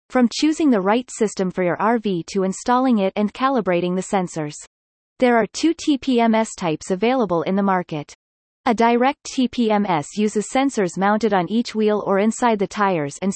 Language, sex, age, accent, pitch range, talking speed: English, female, 30-49, American, 185-250 Hz, 170 wpm